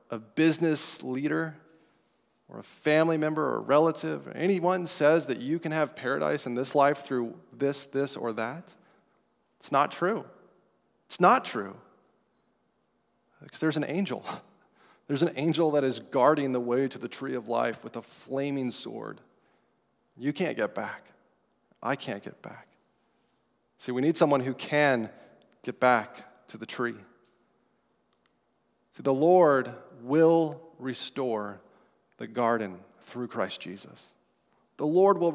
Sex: male